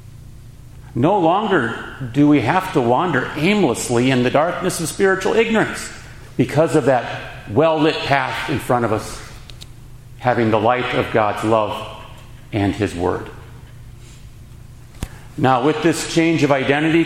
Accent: American